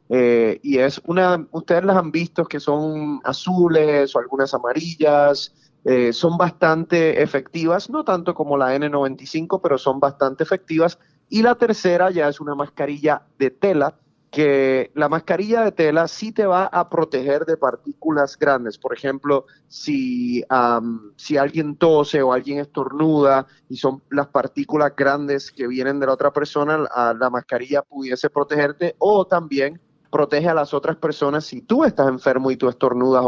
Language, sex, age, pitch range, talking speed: Spanish, male, 30-49, 135-165 Hz, 160 wpm